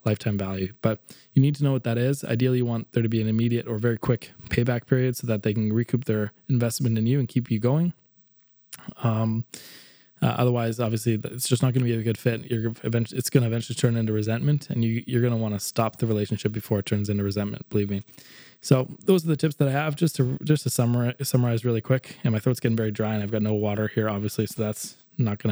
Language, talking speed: English, 255 wpm